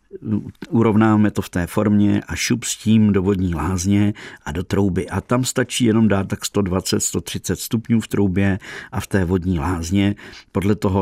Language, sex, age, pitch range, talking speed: Czech, male, 50-69, 90-105 Hz, 175 wpm